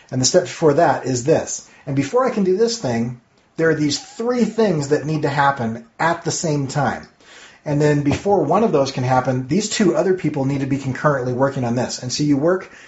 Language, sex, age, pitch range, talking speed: English, male, 30-49, 125-160 Hz, 235 wpm